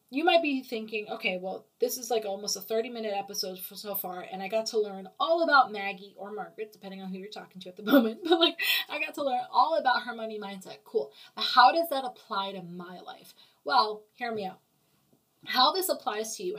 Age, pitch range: 20-39, 195-250 Hz